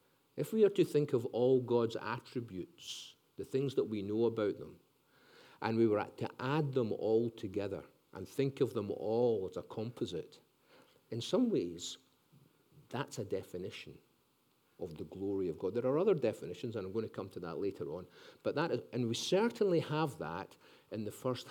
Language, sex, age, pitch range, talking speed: English, male, 50-69, 115-165 Hz, 185 wpm